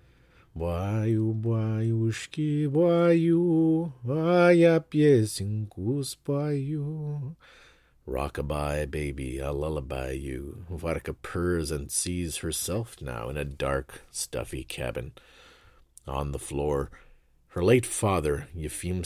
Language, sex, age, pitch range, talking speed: English, male, 40-59, 75-105 Hz, 90 wpm